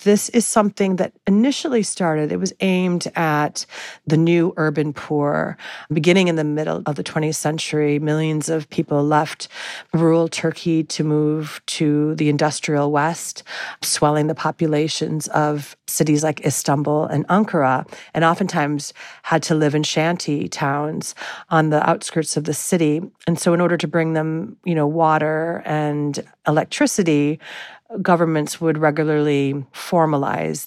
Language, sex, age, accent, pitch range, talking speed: English, female, 40-59, American, 145-165 Hz, 145 wpm